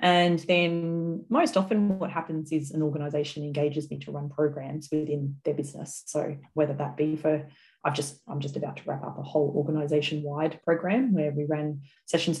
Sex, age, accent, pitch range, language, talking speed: female, 30-49, Australian, 150-175 Hz, English, 185 wpm